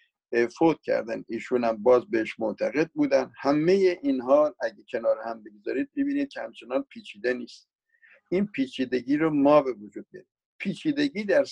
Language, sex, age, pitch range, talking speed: Persian, male, 50-69, 120-190 Hz, 140 wpm